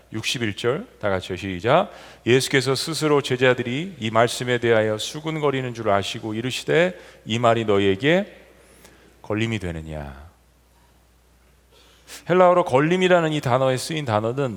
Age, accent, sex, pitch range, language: 40-59, native, male, 115-175 Hz, Korean